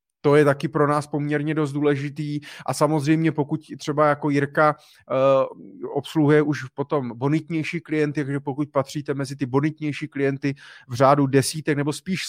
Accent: native